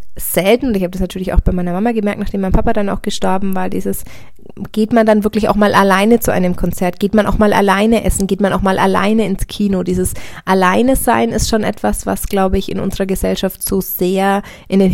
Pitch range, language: 175-210 Hz, German